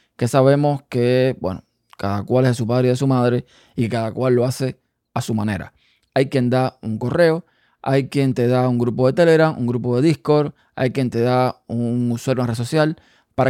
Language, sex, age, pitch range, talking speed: Spanish, male, 20-39, 120-145 Hz, 220 wpm